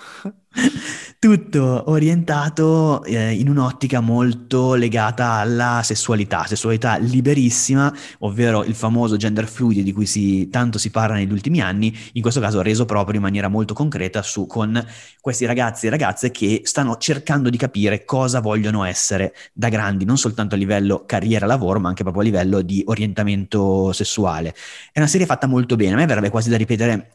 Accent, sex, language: native, male, Italian